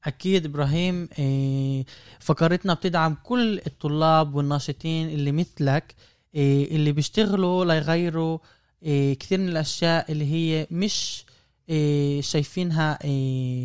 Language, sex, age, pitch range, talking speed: Arabic, male, 20-39, 145-185 Hz, 85 wpm